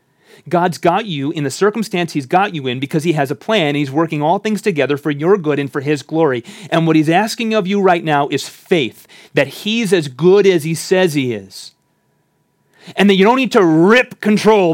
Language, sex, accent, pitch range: English, male, American, 150-195 Hz